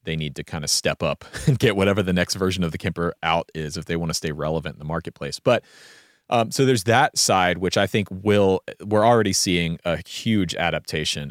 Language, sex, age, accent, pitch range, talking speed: English, male, 30-49, American, 85-110 Hz, 230 wpm